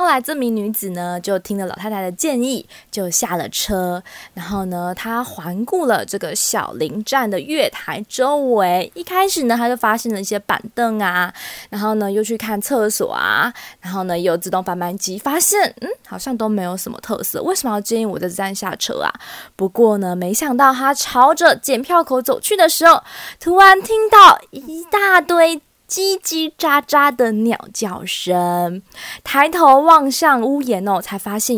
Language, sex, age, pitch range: Chinese, female, 20-39, 195-300 Hz